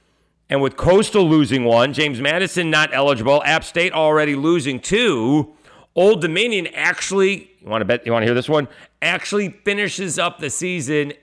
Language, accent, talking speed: English, American, 170 wpm